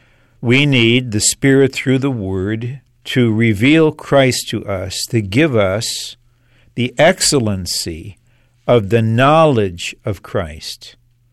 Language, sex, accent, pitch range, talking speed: English, male, American, 110-135 Hz, 115 wpm